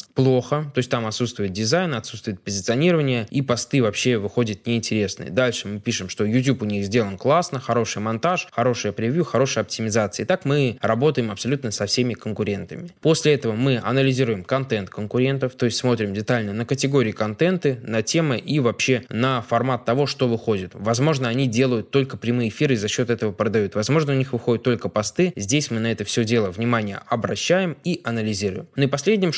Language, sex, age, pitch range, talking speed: Russian, male, 20-39, 110-135 Hz, 180 wpm